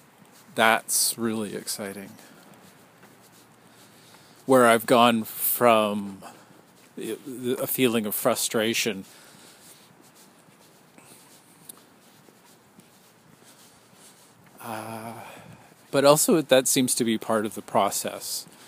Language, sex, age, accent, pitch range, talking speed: English, male, 40-59, American, 105-125 Hz, 75 wpm